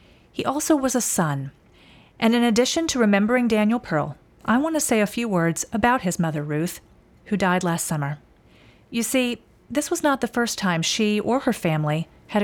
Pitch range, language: 170-230 Hz, English